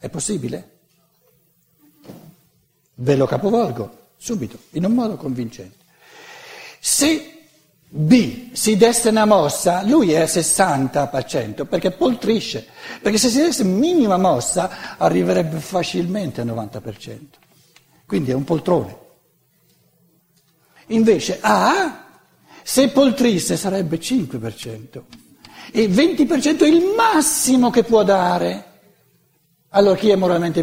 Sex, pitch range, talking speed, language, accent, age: male, 150-225 Hz, 105 wpm, Italian, native, 60-79